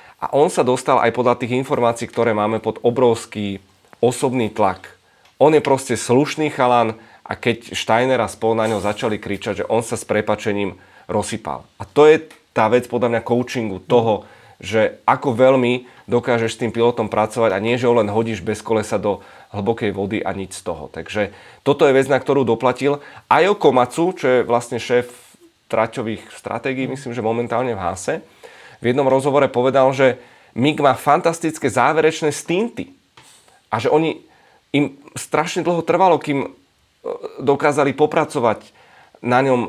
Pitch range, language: 110-135 Hz, Czech